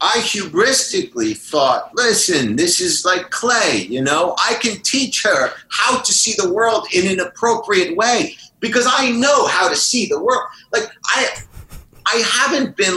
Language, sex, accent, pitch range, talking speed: English, male, American, 175-275 Hz, 165 wpm